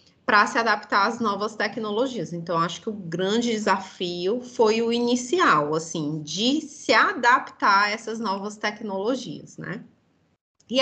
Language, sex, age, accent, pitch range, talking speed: Portuguese, female, 20-39, Brazilian, 180-240 Hz, 140 wpm